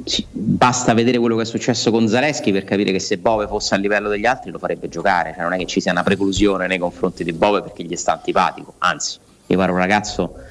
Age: 30-49